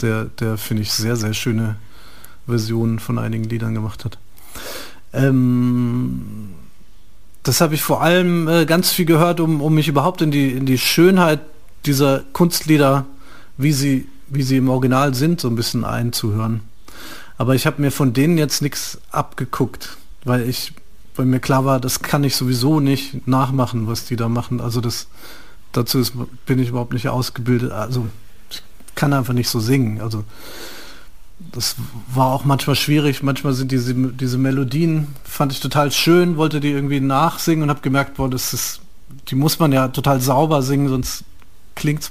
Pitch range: 120-145 Hz